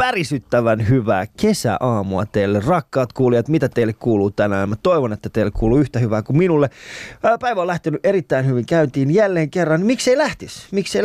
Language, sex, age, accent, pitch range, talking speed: Finnish, male, 20-39, native, 120-165 Hz, 165 wpm